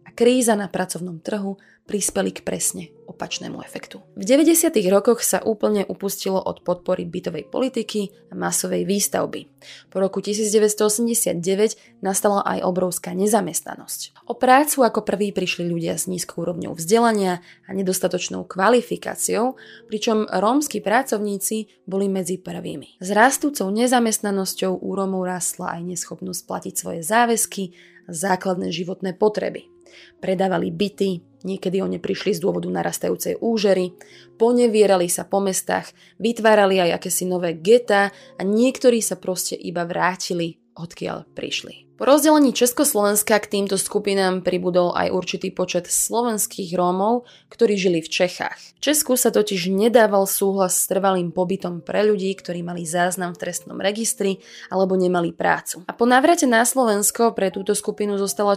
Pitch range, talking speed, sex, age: 180-225 Hz, 135 wpm, female, 20-39